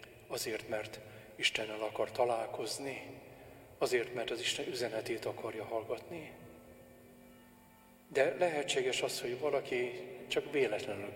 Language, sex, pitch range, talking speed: Hungarian, male, 120-130 Hz, 100 wpm